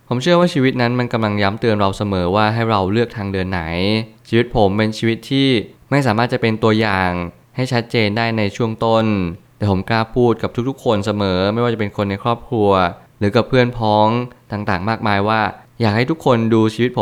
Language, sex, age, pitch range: Thai, male, 20-39, 100-120 Hz